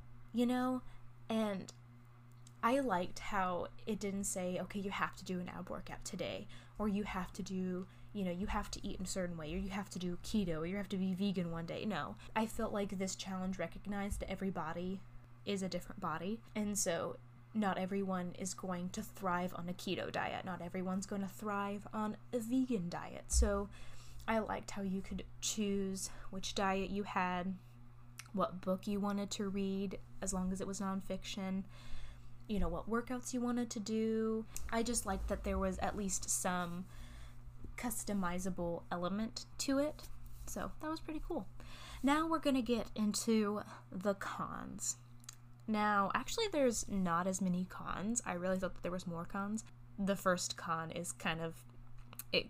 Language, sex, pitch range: English, female, 165-205 Hz